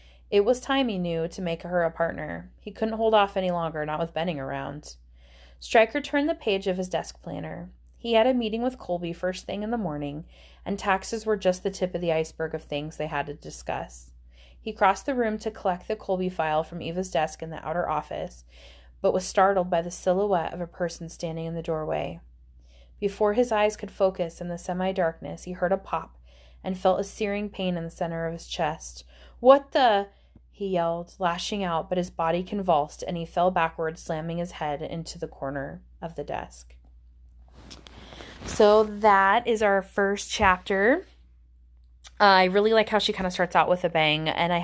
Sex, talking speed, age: female, 200 wpm, 20-39